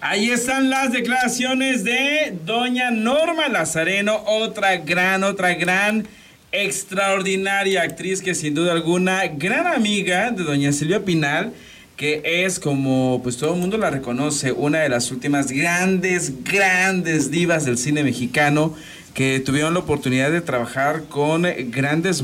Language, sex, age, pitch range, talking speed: Spanish, male, 40-59, 130-190 Hz, 140 wpm